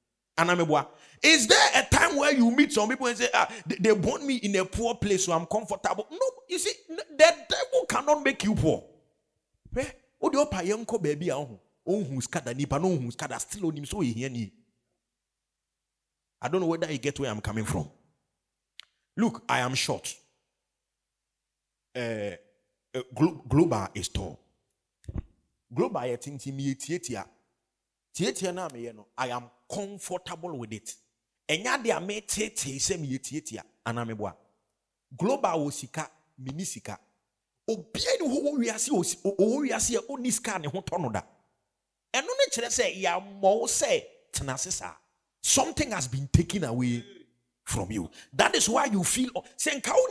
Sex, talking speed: male, 135 wpm